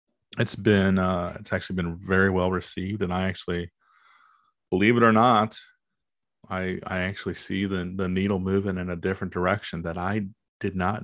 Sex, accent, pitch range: male, American, 85-105 Hz